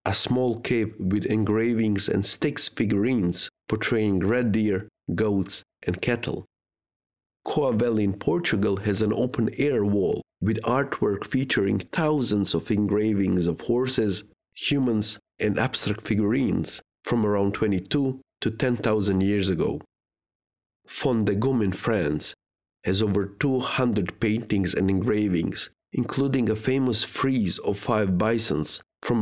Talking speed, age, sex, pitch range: 125 wpm, 50-69, male, 95-115 Hz